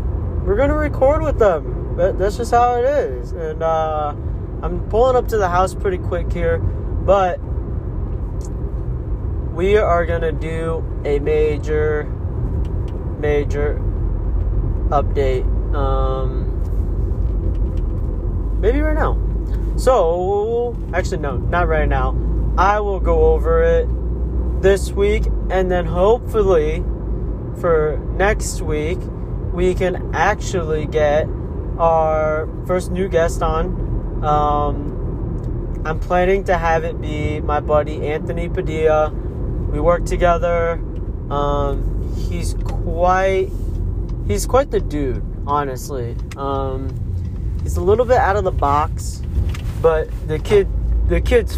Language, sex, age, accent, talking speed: English, male, 20-39, American, 115 wpm